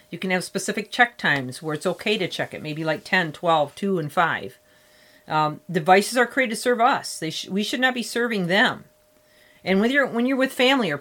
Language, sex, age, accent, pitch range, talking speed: English, female, 40-59, American, 165-215 Hz, 230 wpm